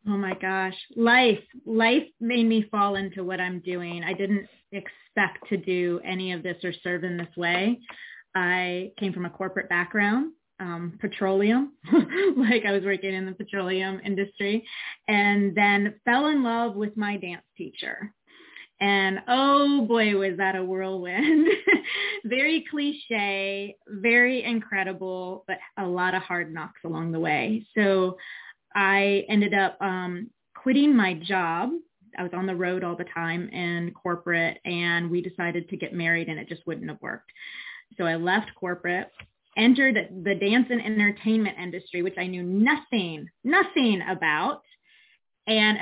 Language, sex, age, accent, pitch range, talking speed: English, female, 20-39, American, 180-235 Hz, 155 wpm